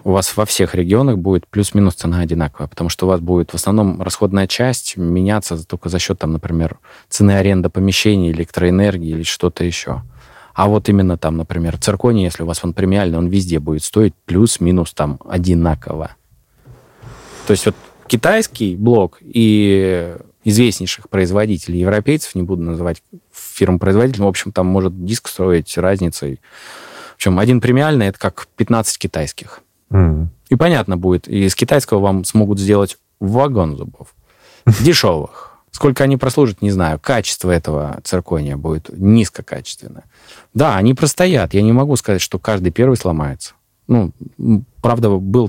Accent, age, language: native, 20-39, Russian